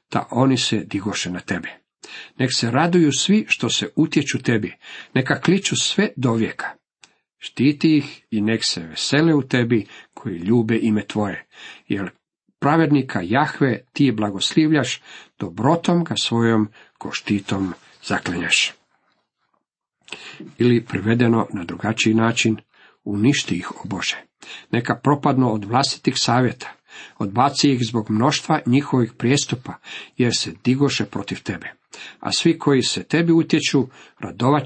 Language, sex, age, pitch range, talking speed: Croatian, male, 50-69, 110-150 Hz, 130 wpm